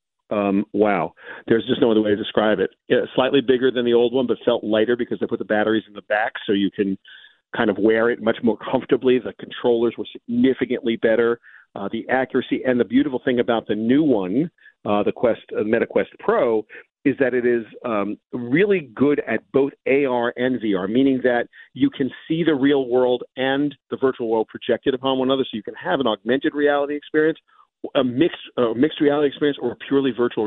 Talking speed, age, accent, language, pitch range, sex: 210 wpm, 40-59, American, English, 120-150 Hz, male